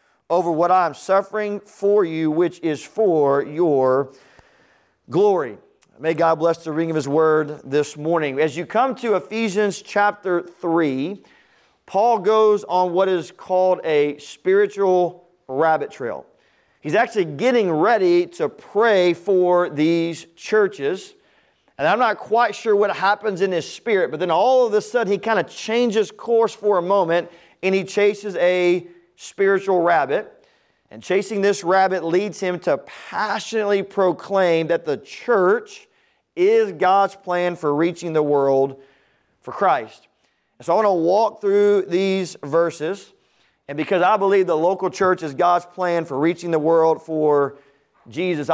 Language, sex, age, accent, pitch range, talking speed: English, male, 40-59, American, 165-205 Hz, 150 wpm